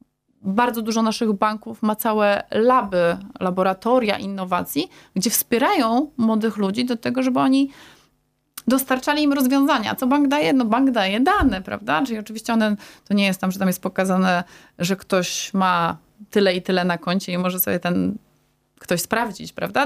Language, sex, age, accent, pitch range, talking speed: Polish, female, 20-39, native, 195-235 Hz, 160 wpm